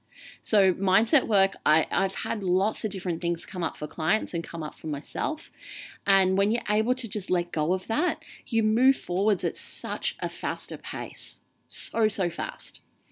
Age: 30-49